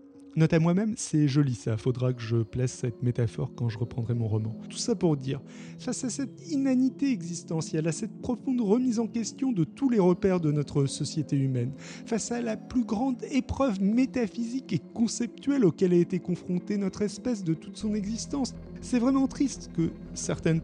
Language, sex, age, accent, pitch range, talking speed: French, male, 30-49, French, 155-225 Hz, 185 wpm